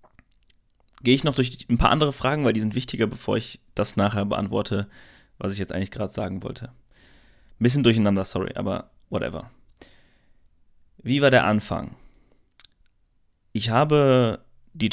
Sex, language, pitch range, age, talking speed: male, German, 100-130 Hz, 30-49, 150 wpm